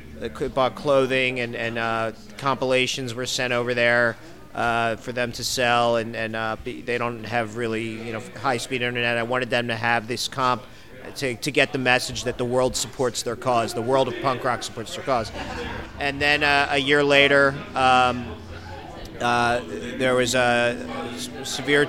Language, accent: English, American